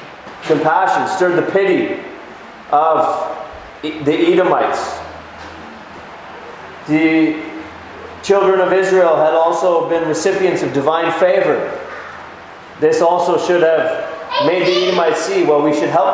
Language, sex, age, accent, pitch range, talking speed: English, male, 30-49, American, 150-190 Hz, 110 wpm